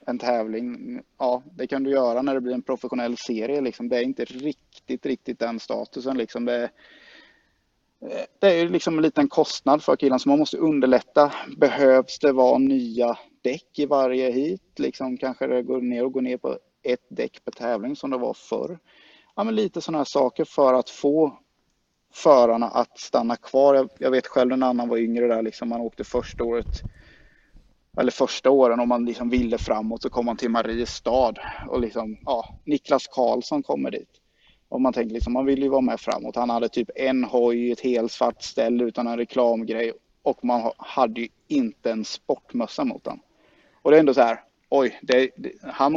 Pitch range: 120-140 Hz